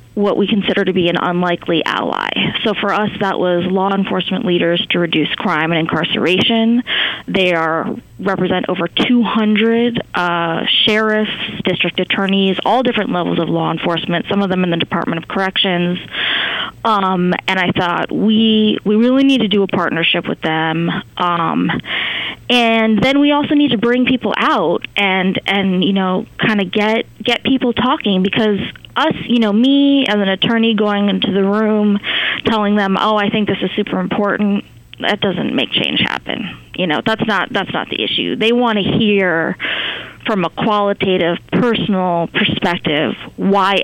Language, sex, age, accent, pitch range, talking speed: English, female, 20-39, American, 180-220 Hz, 165 wpm